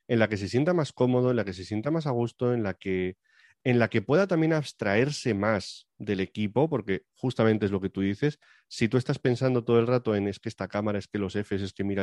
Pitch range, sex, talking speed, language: 100-130 Hz, male, 265 wpm, Spanish